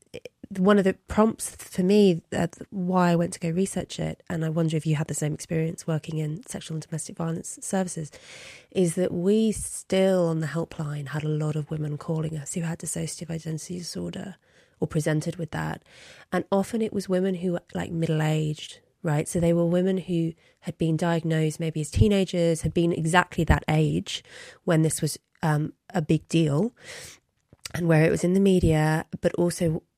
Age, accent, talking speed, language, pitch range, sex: 30-49, British, 190 wpm, English, 155-180 Hz, female